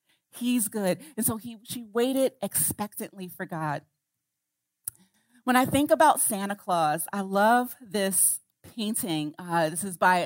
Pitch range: 180-235 Hz